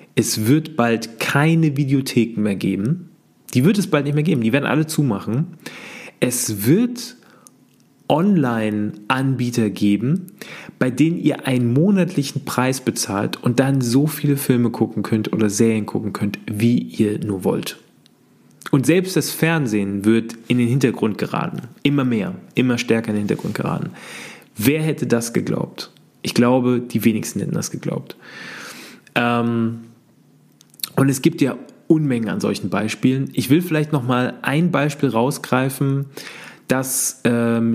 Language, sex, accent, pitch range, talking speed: German, male, German, 115-150 Hz, 145 wpm